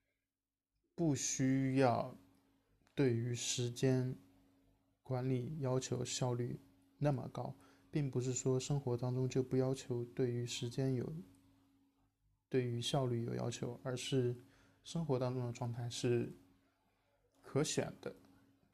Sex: male